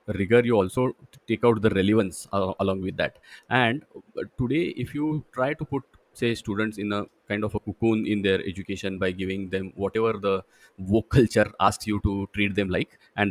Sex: male